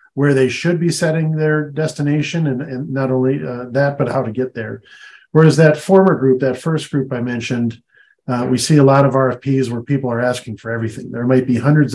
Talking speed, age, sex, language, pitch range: 220 wpm, 40-59, male, English, 115-140 Hz